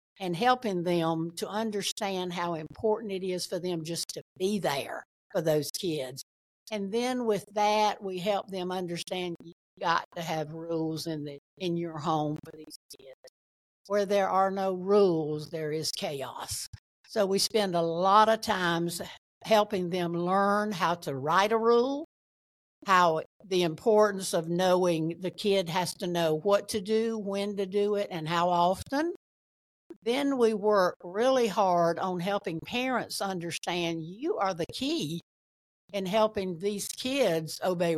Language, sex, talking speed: English, female, 155 wpm